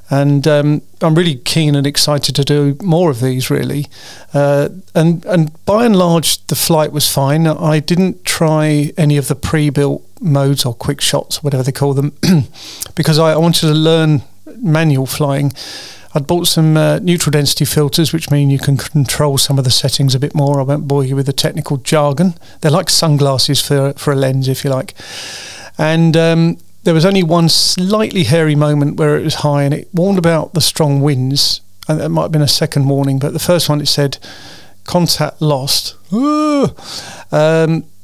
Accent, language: British, English